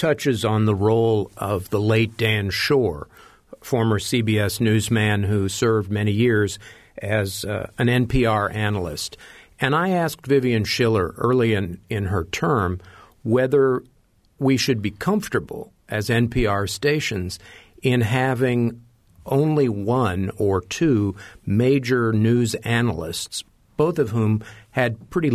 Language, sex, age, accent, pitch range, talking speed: English, male, 50-69, American, 105-130 Hz, 125 wpm